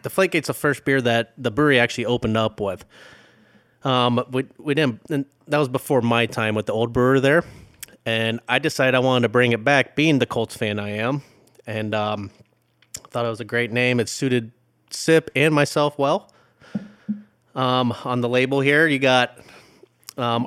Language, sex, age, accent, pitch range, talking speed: English, male, 30-49, American, 120-145 Hz, 195 wpm